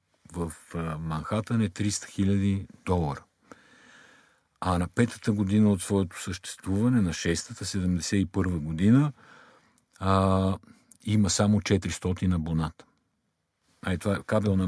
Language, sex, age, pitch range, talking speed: Bulgarian, male, 50-69, 90-120 Hz, 115 wpm